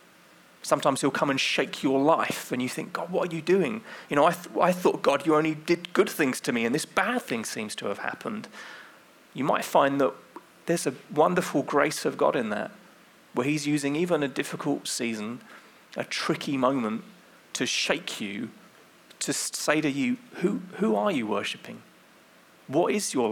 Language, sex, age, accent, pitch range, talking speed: English, male, 30-49, British, 120-165 Hz, 190 wpm